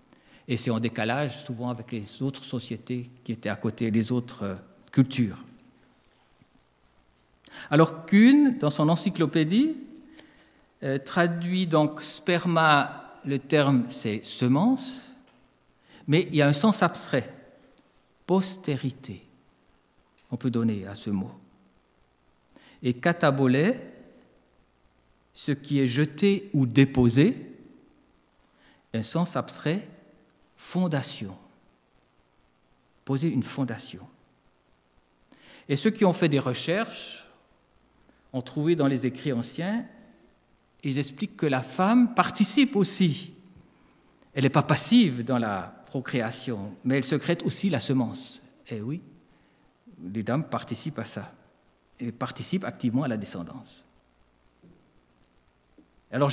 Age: 60-79